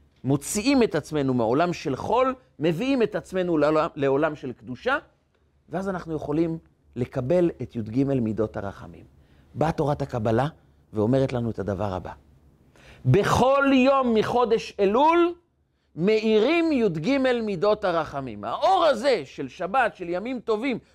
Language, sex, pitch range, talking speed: Hebrew, male, 105-180 Hz, 125 wpm